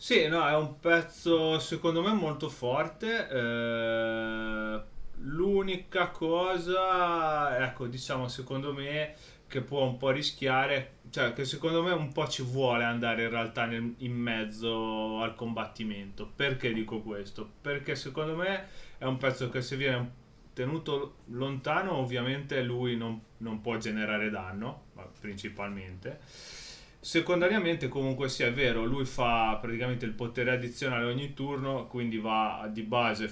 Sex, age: male, 30-49